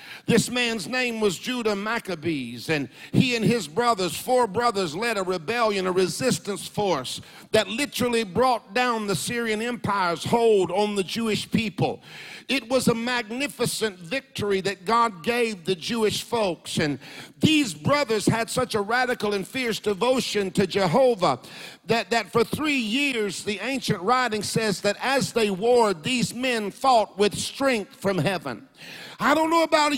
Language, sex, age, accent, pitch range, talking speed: English, male, 50-69, American, 195-240 Hz, 155 wpm